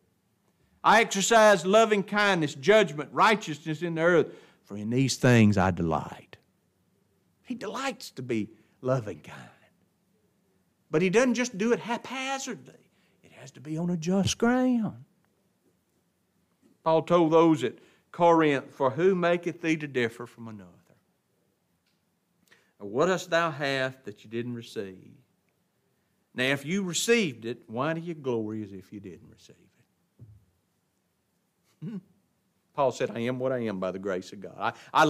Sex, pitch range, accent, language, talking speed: male, 120-180 Hz, American, English, 145 wpm